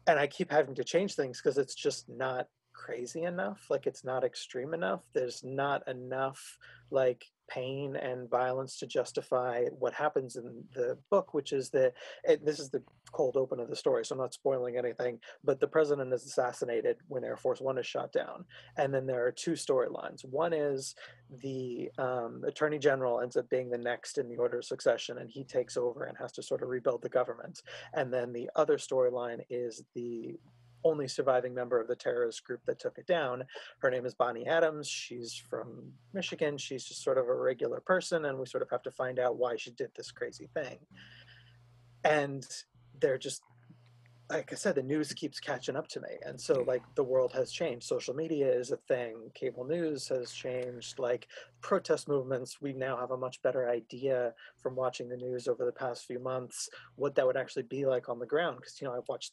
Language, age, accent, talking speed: English, 30-49, American, 205 wpm